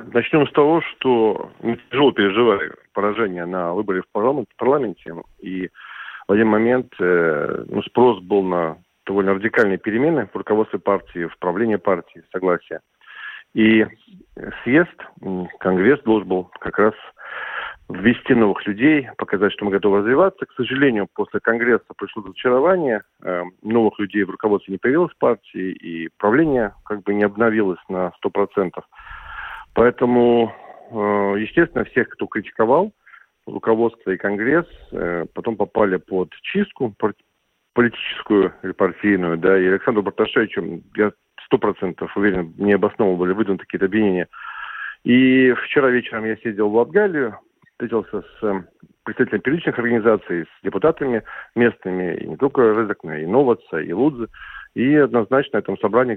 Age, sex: 40-59, male